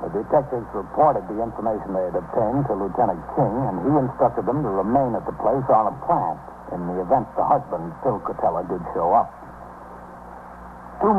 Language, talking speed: English, 180 wpm